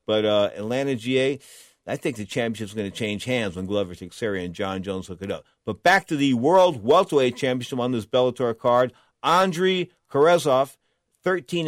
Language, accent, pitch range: English, American, 110-155 Hz